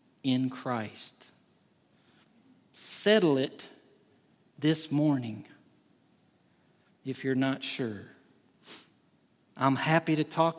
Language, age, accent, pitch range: English, 50-69, American, 130-160 Hz